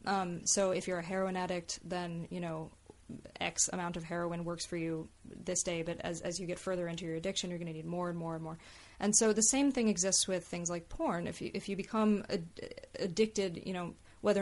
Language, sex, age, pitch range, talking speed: English, female, 20-39, 175-205 Hz, 235 wpm